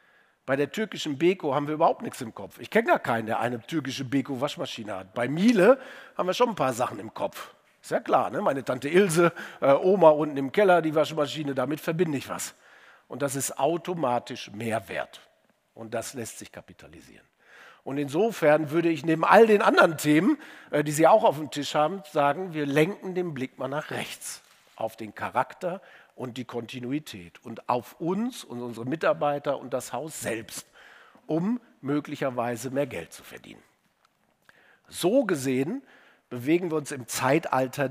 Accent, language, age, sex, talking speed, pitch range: German, German, 50-69, male, 175 wpm, 125-165 Hz